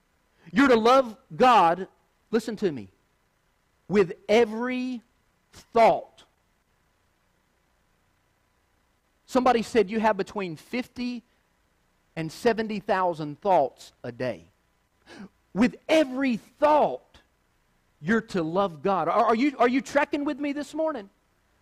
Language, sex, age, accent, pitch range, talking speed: English, male, 50-69, American, 195-270 Hz, 105 wpm